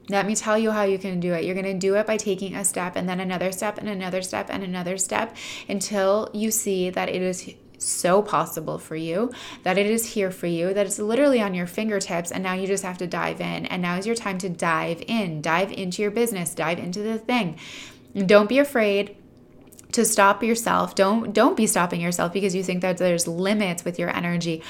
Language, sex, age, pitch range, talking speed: English, female, 20-39, 175-205 Hz, 230 wpm